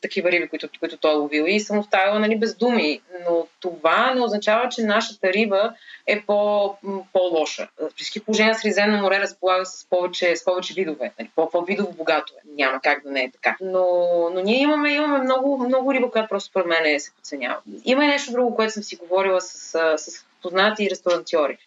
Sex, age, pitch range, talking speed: female, 20-39, 170-220 Hz, 190 wpm